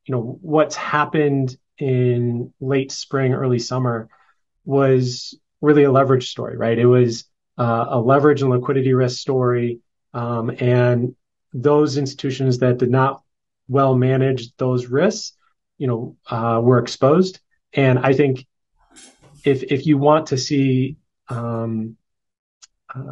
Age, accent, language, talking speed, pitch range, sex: 30-49, American, English, 130 wpm, 125-140 Hz, male